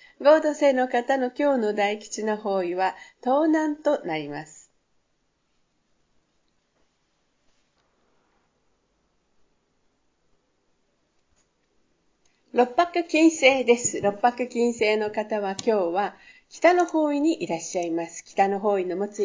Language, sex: Japanese, female